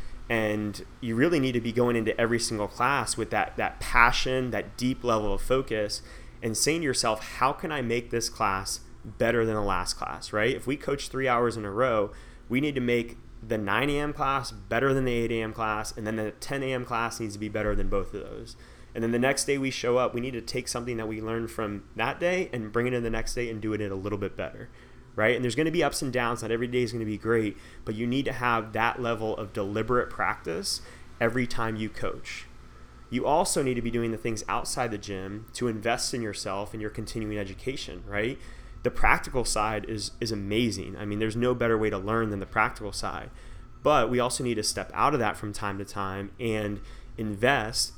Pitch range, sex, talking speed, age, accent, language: 105-120 Hz, male, 240 wpm, 30-49, American, English